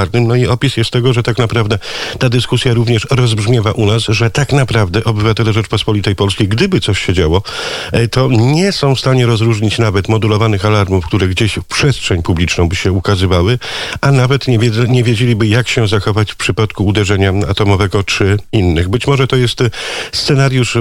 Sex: male